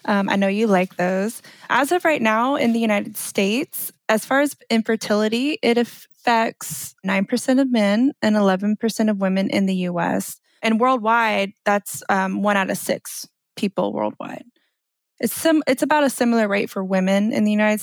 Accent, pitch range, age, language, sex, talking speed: American, 195-225 Hz, 20-39, English, female, 175 wpm